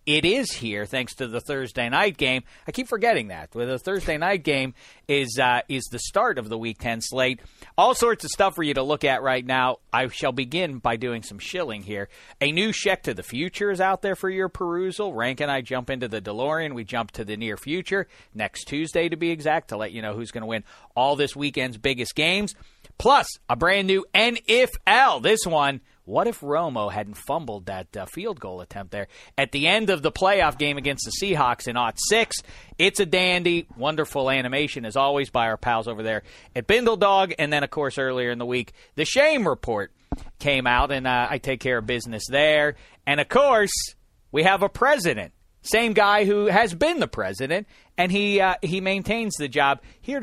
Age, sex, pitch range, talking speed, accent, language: 40-59, male, 120-190 Hz, 210 wpm, American, English